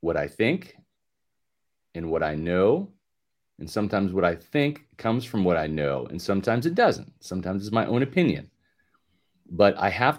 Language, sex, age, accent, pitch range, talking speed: English, male, 40-59, American, 95-130 Hz, 170 wpm